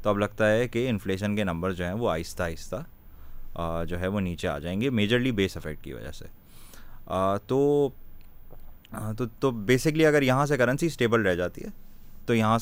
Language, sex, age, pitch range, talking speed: Urdu, male, 20-39, 95-120 Hz, 185 wpm